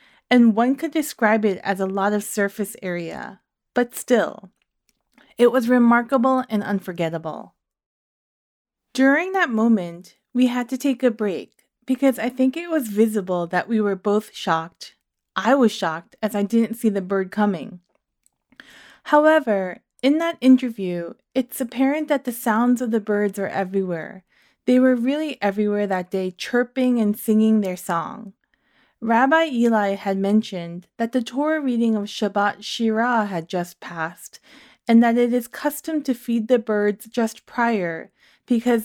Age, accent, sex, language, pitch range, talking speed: 20-39, American, female, English, 195-250 Hz, 155 wpm